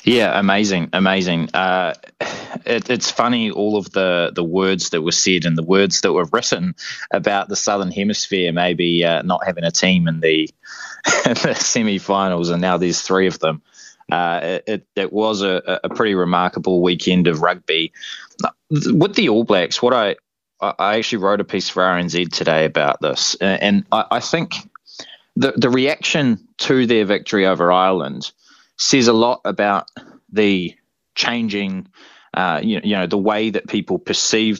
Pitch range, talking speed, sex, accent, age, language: 90-115 Hz, 165 wpm, male, Australian, 20-39, English